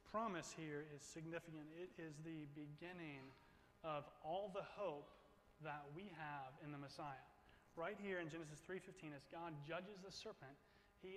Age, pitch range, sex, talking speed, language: 30-49, 145-175 Hz, male, 155 wpm, English